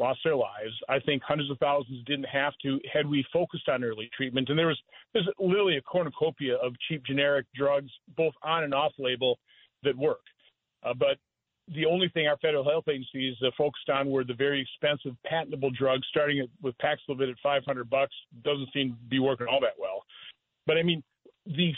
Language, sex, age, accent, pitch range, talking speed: English, male, 50-69, American, 135-170 Hz, 195 wpm